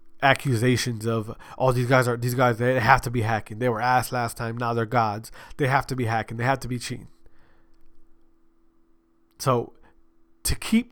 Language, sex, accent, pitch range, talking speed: English, male, American, 105-145 Hz, 190 wpm